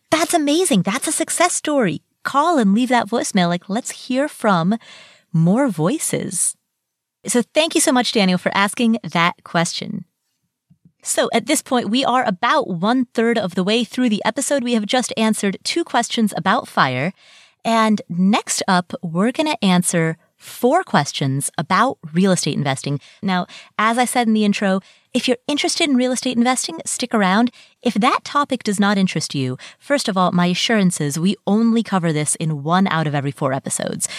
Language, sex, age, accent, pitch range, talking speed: English, female, 30-49, American, 175-245 Hz, 180 wpm